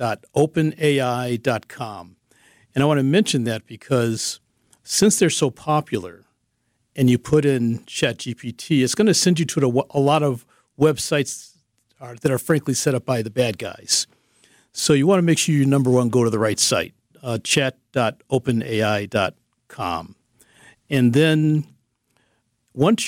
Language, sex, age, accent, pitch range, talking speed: English, male, 50-69, American, 125-160 Hz, 140 wpm